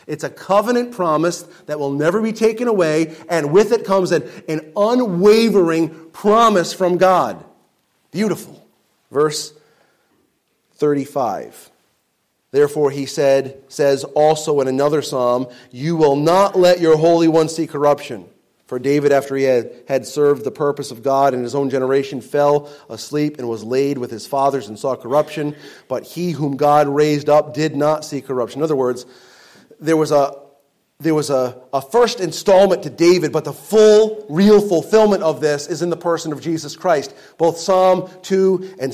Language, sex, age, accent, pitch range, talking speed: English, male, 30-49, American, 145-195 Hz, 165 wpm